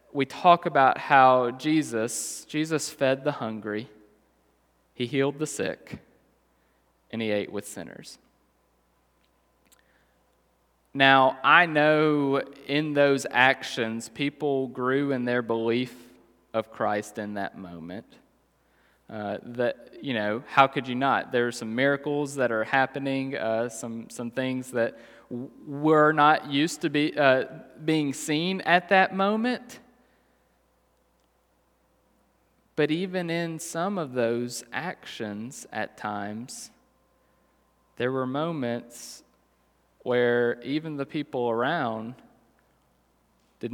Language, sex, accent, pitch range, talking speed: English, male, American, 110-140 Hz, 115 wpm